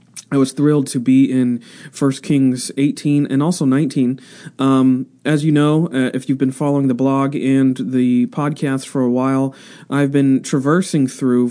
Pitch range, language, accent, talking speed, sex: 125-150 Hz, English, American, 170 wpm, male